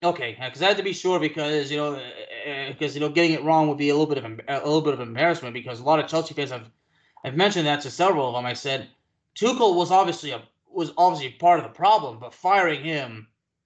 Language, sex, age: English, male, 20-39